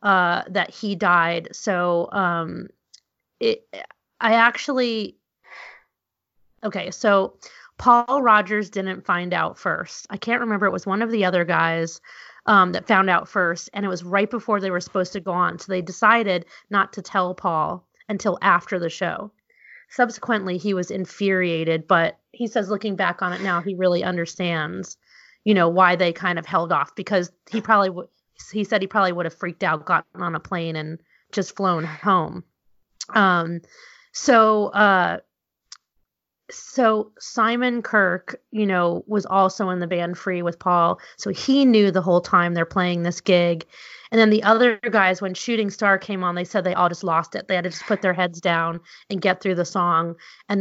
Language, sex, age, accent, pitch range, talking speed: English, female, 30-49, American, 175-210 Hz, 185 wpm